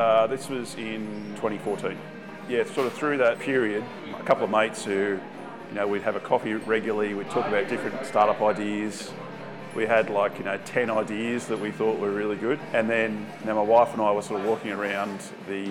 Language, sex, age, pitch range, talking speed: English, male, 30-49, 105-115 Hz, 215 wpm